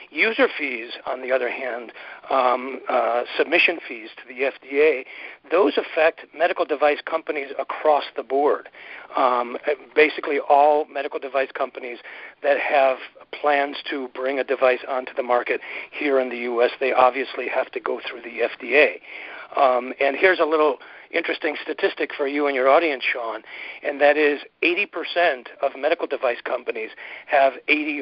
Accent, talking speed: American, 155 wpm